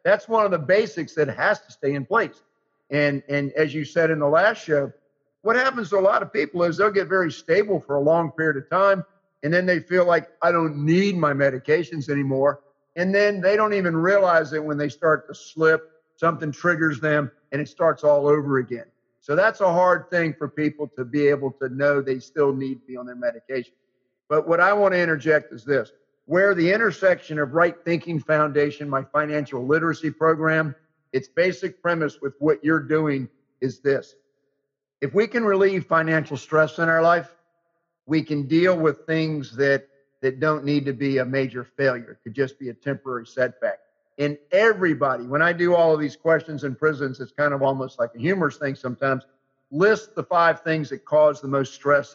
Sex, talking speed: male, 205 wpm